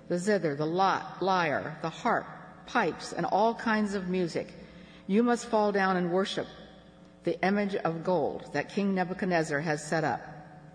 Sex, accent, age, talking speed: female, American, 60-79, 160 wpm